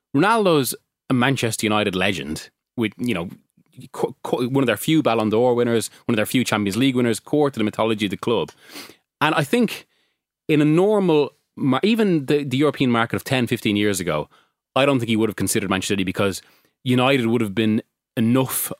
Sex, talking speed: male, 190 wpm